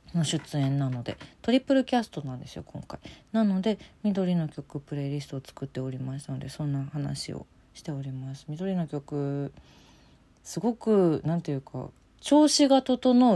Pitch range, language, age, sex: 140-195 Hz, Japanese, 40-59, female